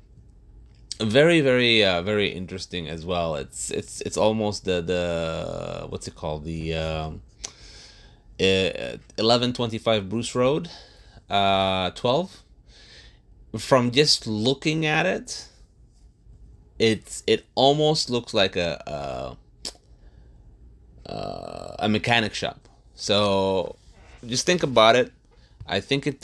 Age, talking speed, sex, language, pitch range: 30-49, 105 wpm, male, English, 90-115 Hz